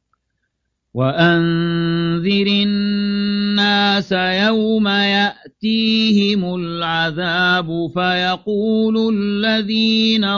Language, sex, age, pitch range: Arabic, male, 50-69, 170-205 Hz